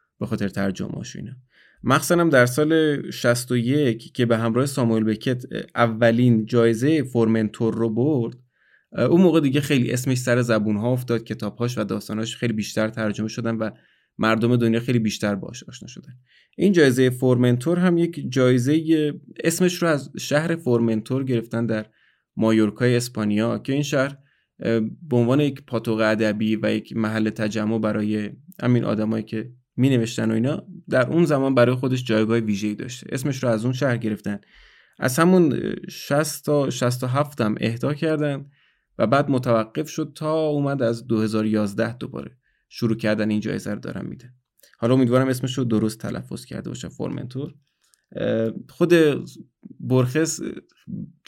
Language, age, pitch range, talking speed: Persian, 20-39, 110-145 Hz, 150 wpm